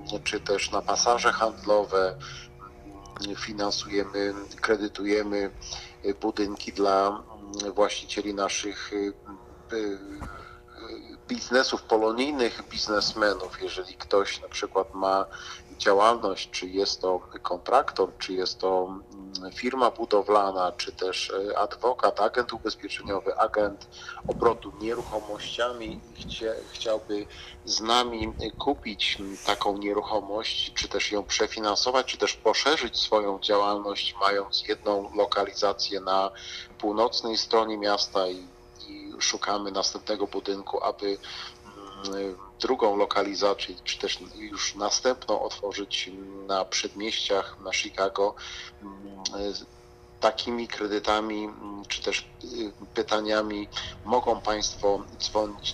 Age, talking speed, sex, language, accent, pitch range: 50-69, 90 wpm, male, Polish, native, 100-110 Hz